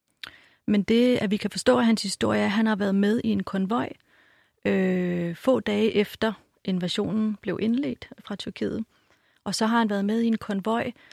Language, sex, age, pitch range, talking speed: Danish, female, 30-49, 185-225 Hz, 195 wpm